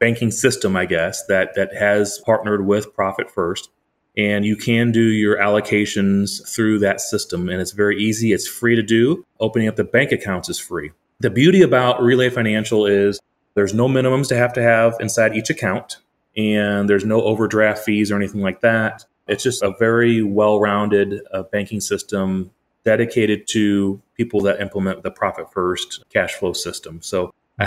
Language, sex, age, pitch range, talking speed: English, male, 30-49, 100-120 Hz, 175 wpm